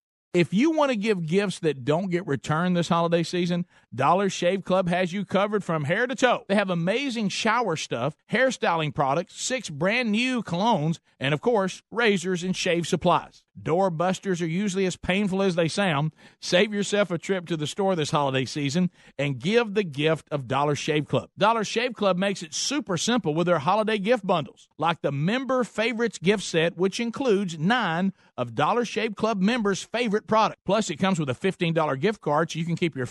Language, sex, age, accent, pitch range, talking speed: English, male, 50-69, American, 170-215 Hz, 200 wpm